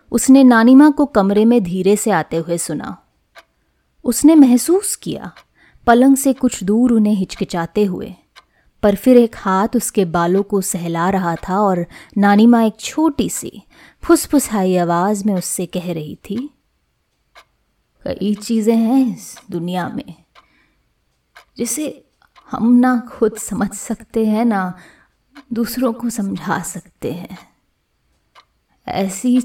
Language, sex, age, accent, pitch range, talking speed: Hindi, female, 20-39, native, 180-245 Hz, 130 wpm